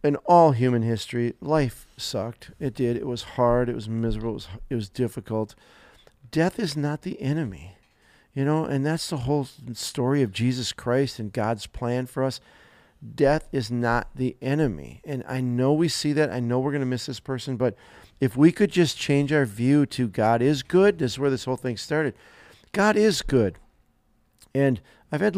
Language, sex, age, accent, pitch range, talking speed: English, male, 50-69, American, 120-150 Hz, 195 wpm